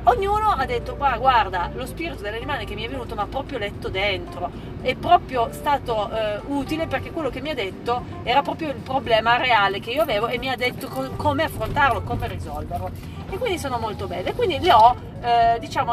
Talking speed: 205 wpm